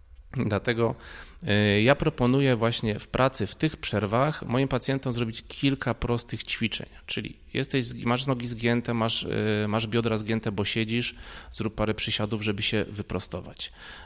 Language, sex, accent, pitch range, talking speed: Polish, male, native, 100-115 Hz, 135 wpm